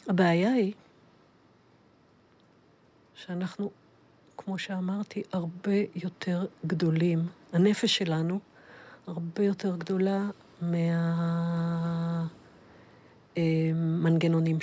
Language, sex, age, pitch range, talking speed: Hebrew, female, 50-69, 165-190 Hz, 55 wpm